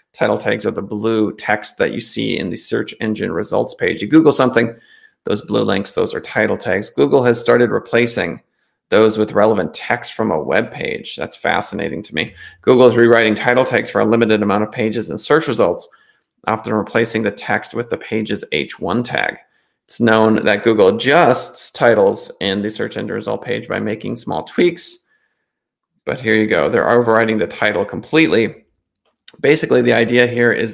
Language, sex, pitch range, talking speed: English, male, 105-120 Hz, 185 wpm